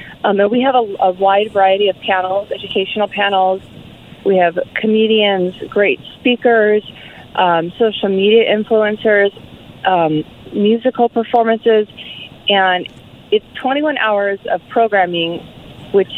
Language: English